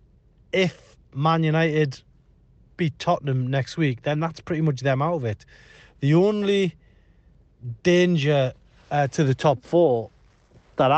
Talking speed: 130 wpm